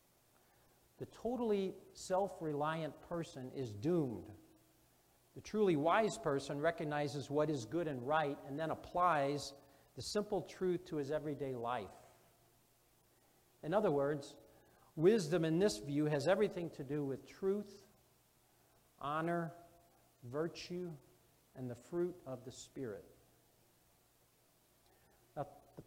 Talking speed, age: 110 wpm, 50-69